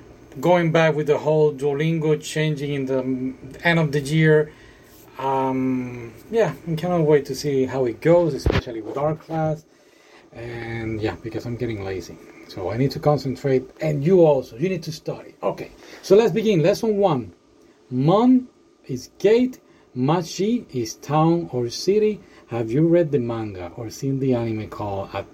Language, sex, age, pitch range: Japanese, male, 40-59, 115-165 Hz